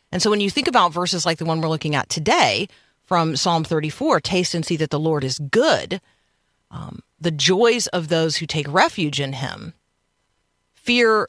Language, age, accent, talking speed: English, 40-59, American, 190 wpm